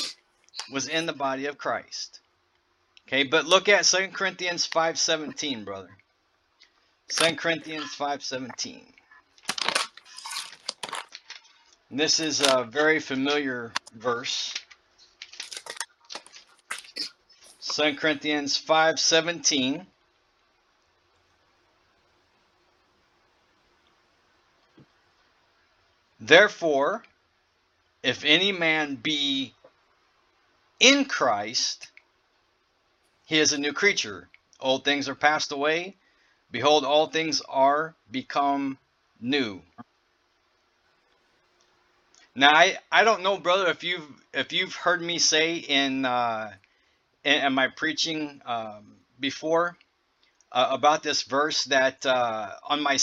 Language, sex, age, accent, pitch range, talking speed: English, male, 50-69, American, 140-165 Hz, 90 wpm